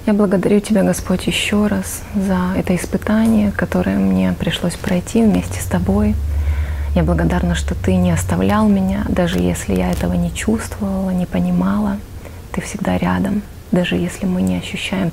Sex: female